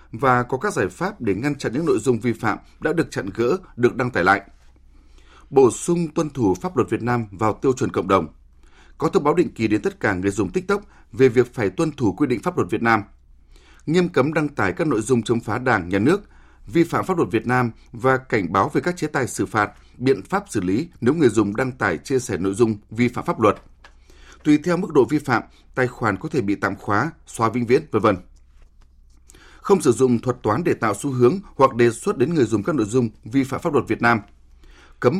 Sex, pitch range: male, 100-135 Hz